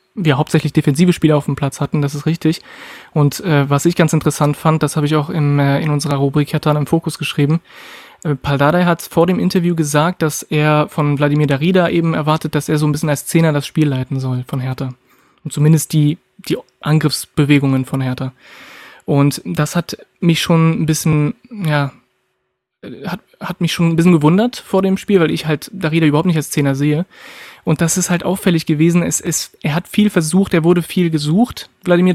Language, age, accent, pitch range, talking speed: German, 20-39, German, 145-170 Hz, 205 wpm